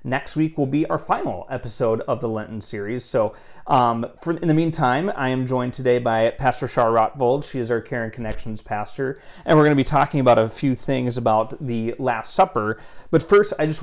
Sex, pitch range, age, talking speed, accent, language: male, 110-135 Hz, 30-49, 215 wpm, American, English